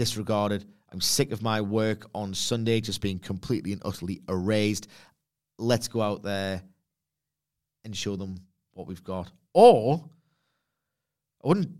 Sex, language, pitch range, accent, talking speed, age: male, English, 105-145 Hz, British, 135 wpm, 30-49